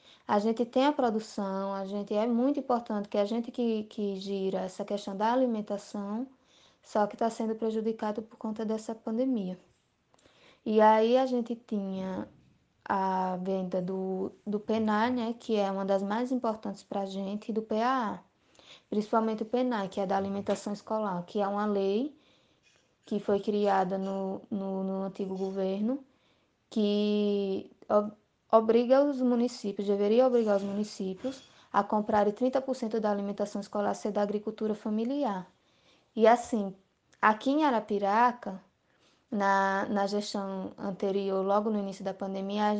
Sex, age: female, 20-39